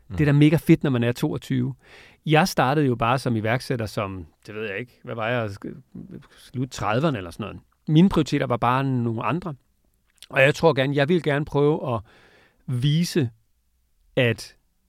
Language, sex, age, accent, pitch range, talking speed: Danish, male, 40-59, native, 115-155 Hz, 180 wpm